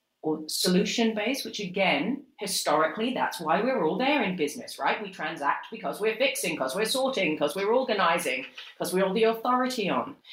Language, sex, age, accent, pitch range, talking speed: English, female, 40-59, British, 170-220 Hz, 175 wpm